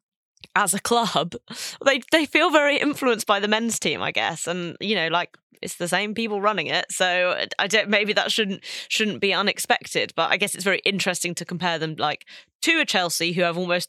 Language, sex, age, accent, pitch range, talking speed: English, female, 20-39, British, 165-205 Hz, 210 wpm